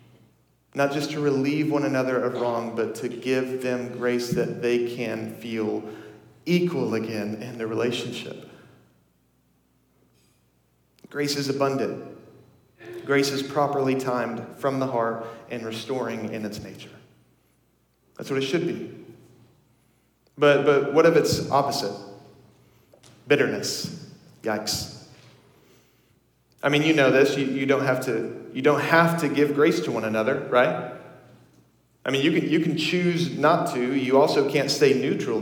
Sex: male